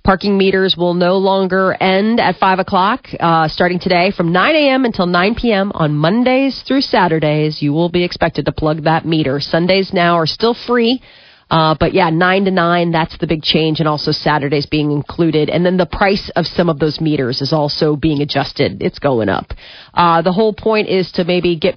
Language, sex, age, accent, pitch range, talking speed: English, female, 30-49, American, 160-190 Hz, 200 wpm